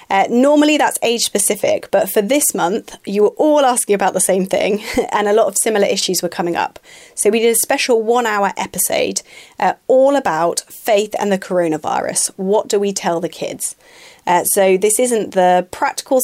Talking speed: 190 wpm